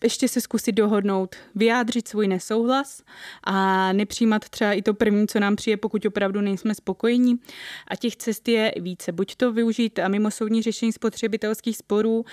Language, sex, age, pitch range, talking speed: Czech, female, 20-39, 195-225 Hz, 160 wpm